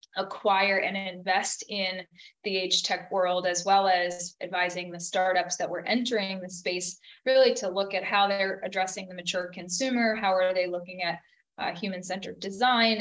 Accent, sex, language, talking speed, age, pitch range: American, female, English, 175 wpm, 20-39, 185-215 Hz